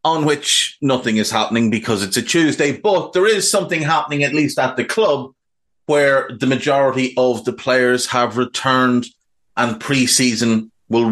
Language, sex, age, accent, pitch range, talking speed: English, male, 30-49, Irish, 115-150 Hz, 160 wpm